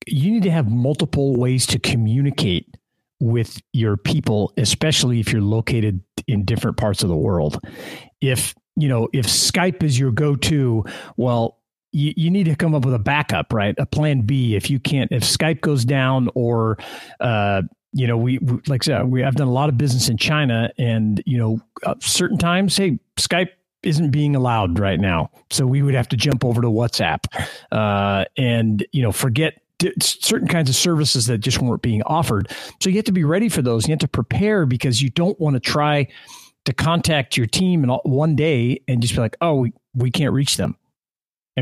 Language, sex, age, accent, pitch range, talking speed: English, male, 40-59, American, 115-150 Hz, 200 wpm